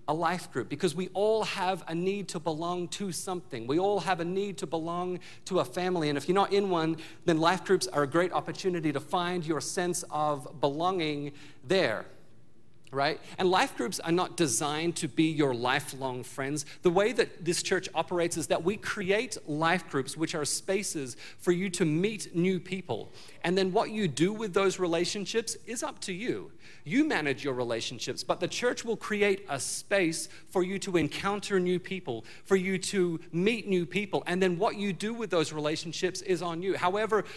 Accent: American